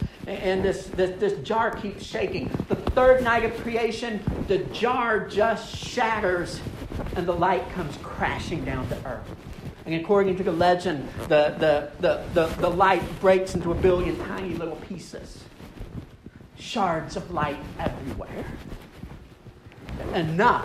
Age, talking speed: 40-59, 135 wpm